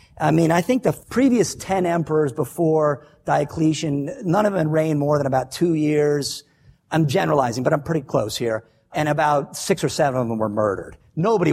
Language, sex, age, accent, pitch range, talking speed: English, male, 50-69, American, 135-190 Hz, 185 wpm